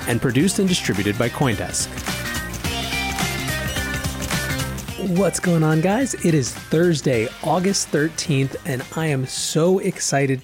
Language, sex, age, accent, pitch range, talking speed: English, male, 30-49, American, 120-160 Hz, 115 wpm